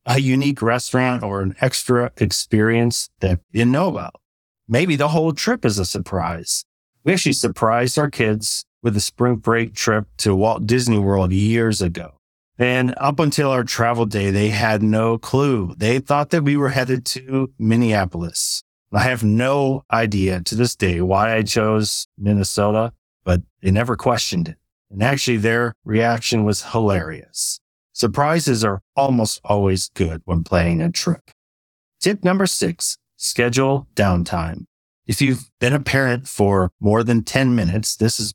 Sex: male